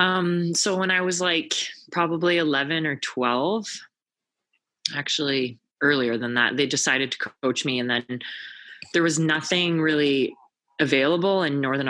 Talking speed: 140 wpm